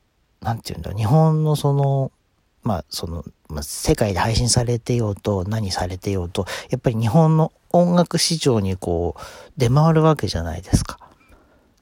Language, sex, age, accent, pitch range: Japanese, male, 40-59, native, 95-140 Hz